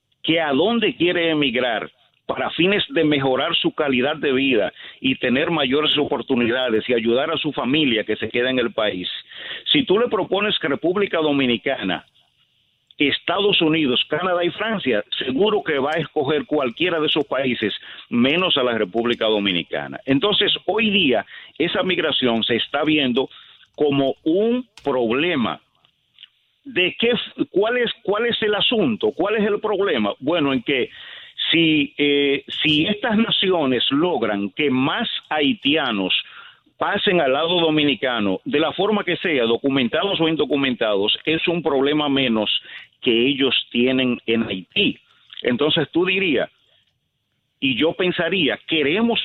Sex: male